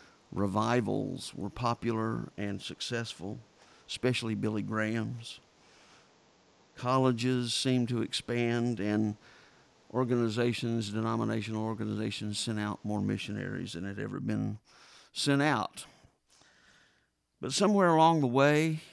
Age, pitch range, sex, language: 50-69, 110-125 Hz, male, English